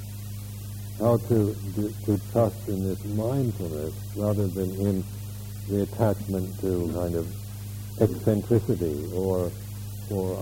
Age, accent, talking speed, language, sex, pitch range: 60-79, American, 110 wpm, English, male, 100-105 Hz